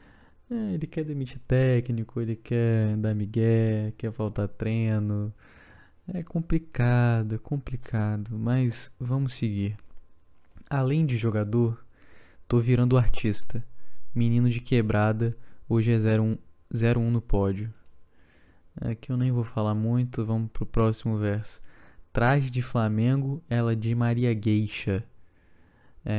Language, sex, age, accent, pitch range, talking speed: Portuguese, male, 20-39, Brazilian, 105-120 Hz, 115 wpm